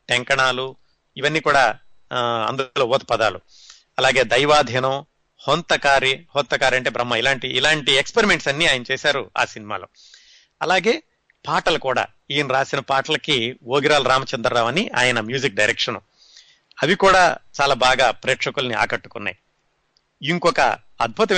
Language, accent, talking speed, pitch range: Telugu, native, 110 wpm, 125-150 Hz